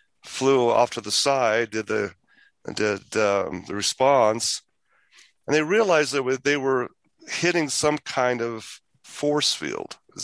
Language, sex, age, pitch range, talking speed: English, male, 40-59, 110-145 Hz, 140 wpm